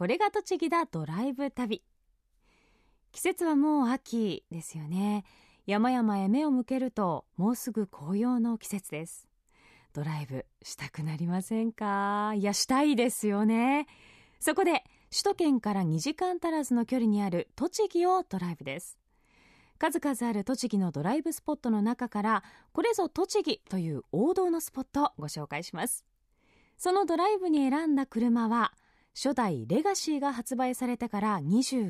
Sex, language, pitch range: female, Japanese, 185-280 Hz